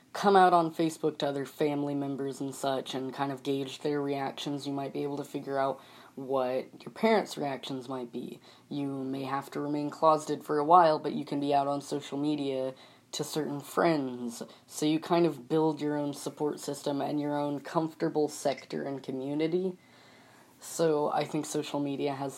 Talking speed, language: 190 wpm, English